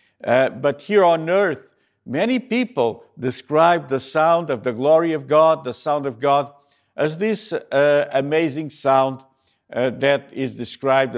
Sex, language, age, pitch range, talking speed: male, English, 50-69, 135-160 Hz, 150 wpm